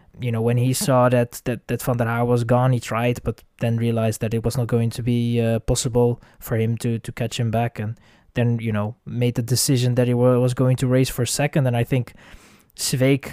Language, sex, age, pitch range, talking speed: English, male, 20-39, 120-135 Hz, 240 wpm